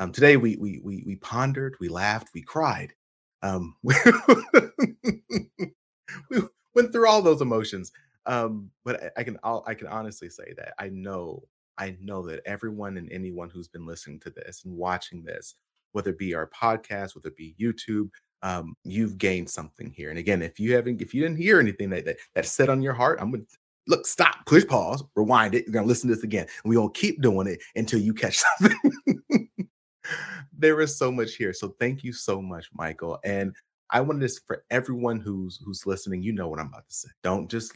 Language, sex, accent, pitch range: English, male, American, 95-135 Hz